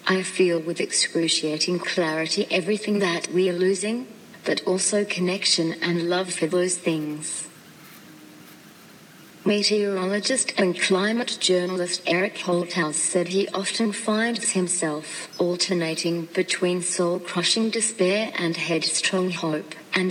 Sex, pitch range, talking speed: female, 170-200 Hz, 110 wpm